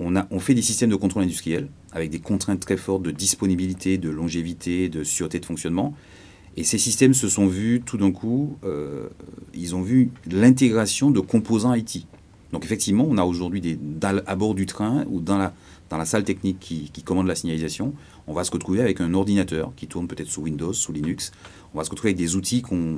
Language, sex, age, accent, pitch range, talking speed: French, male, 30-49, French, 85-105 Hz, 220 wpm